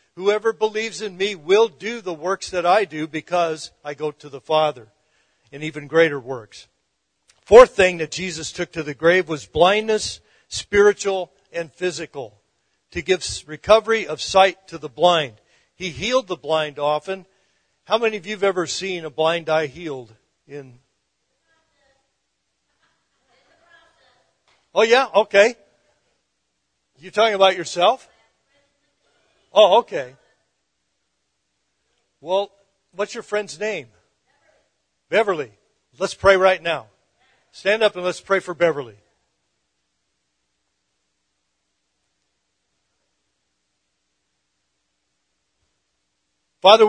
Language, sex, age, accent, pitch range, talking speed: English, male, 50-69, American, 150-200 Hz, 110 wpm